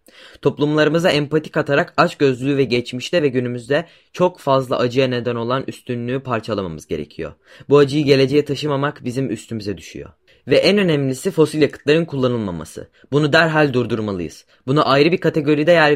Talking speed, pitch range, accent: 140 wpm, 125-150 Hz, native